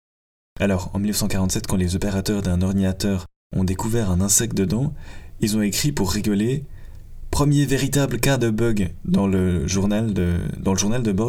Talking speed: 160 wpm